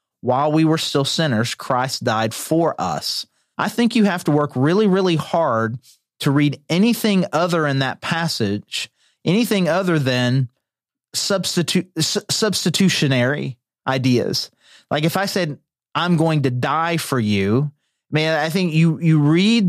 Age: 30-49